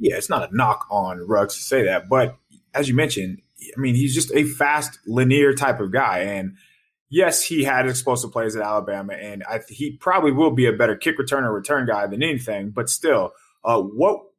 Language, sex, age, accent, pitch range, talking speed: English, male, 20-39, American, 115-155 Hz, 215 wpm